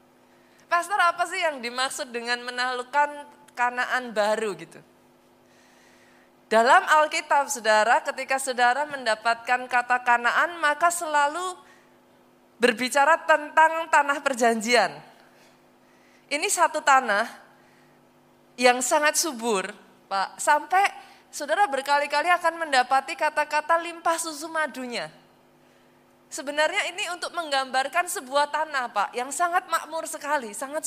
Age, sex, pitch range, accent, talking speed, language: 20-39, female, 245-310 Hz, native, 100 wpm, Indonesian